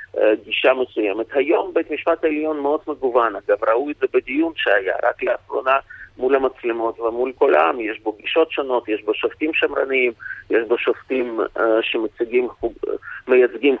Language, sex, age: Hebrew, male, 40-59